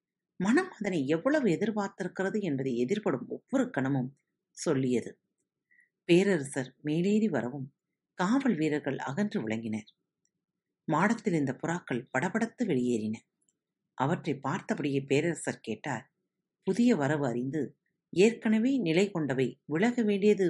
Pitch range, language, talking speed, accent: 140-215 Hz, Tamil, 95 wpm, native